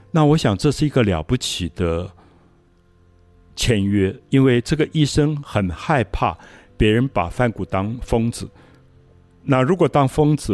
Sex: male